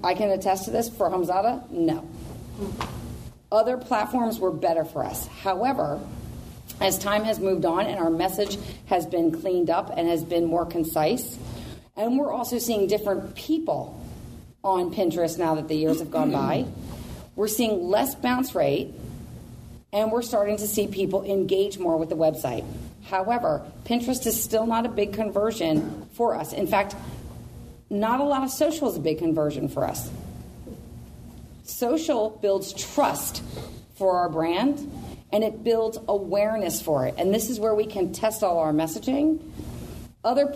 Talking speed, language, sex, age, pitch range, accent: 160 wpm, English, female, 40-59, 170-225 Hz, American